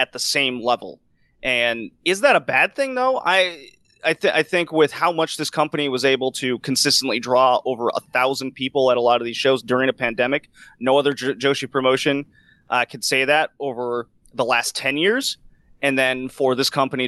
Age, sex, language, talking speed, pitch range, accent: 30-49, male, English, 205 wpm, 125-150 Hz, American